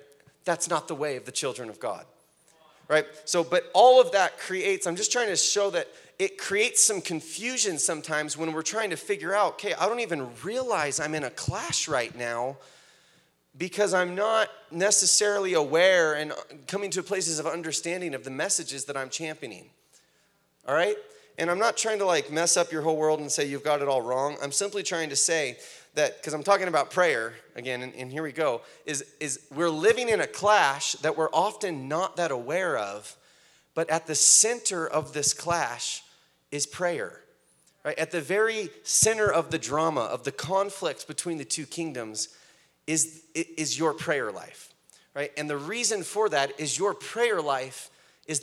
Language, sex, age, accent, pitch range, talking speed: English, male, 30-49, American, 150-200 Hz, 190 wpm